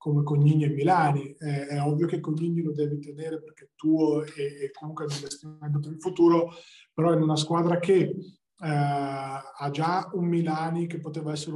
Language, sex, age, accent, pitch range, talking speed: Italian, male, 20-39, native, 150-175 Hz, 190 wpm